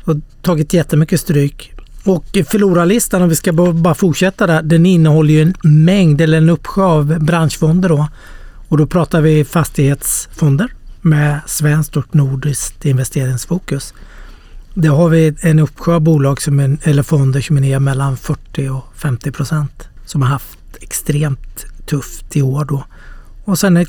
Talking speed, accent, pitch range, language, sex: 145 wpm, native, 145-175 Hz, Swedish, male